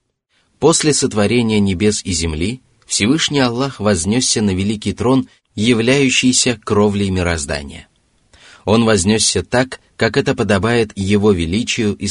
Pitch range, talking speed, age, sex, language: 95-120 Hz, 115 wpm, 30-49, male, Russian